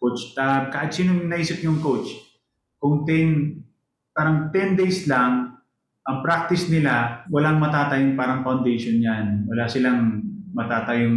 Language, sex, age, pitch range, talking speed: English, male, 20-39, 135-175 Hz, 130 wpm